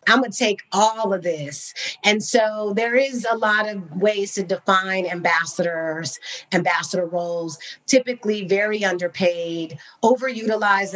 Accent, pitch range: American, 175-205 Hz